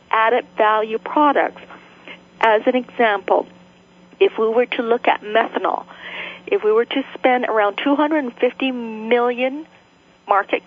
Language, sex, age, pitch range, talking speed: English, female, 40-59, 210-265 Hz, 125 wpm